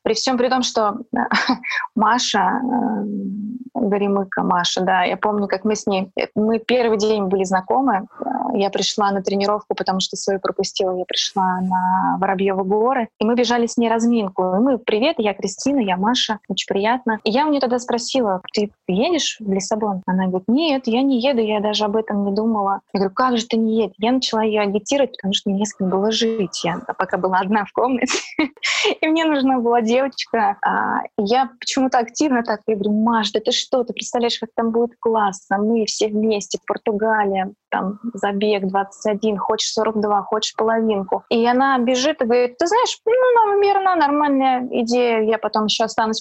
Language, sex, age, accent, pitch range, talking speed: Russian, female, 20-39, native, 200-250 Hz, 190 wpm